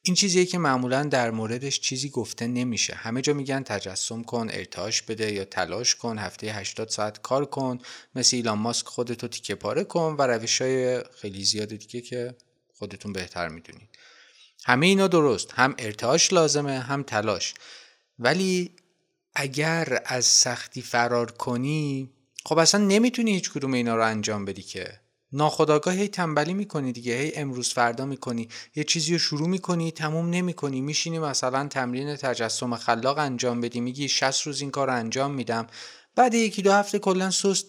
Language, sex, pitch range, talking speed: Persian, male, 120-160 Hz, 165 wpm